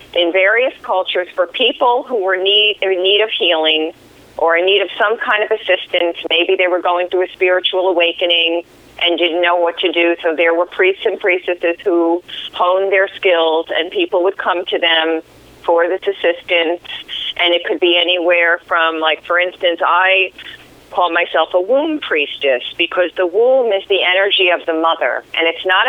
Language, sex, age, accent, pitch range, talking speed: English, female, 40-59, American, 170-195 Hz, 185 wpm